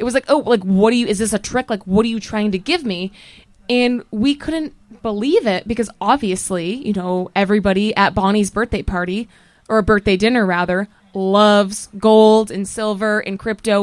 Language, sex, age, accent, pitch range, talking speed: English, female, 20-39, American, 195-240 Hz, 195 wpm